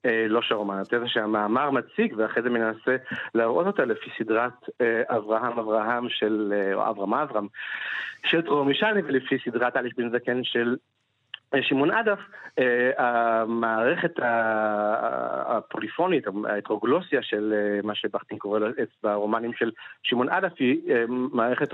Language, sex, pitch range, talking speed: Hebrew, male, 110-130 Hz, 120 wpm